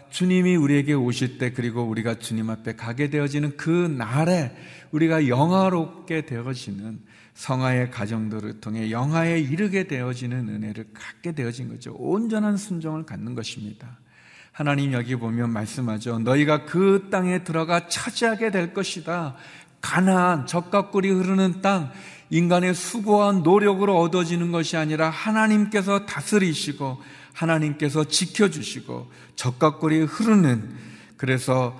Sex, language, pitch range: male, Korean, 120-175 Hz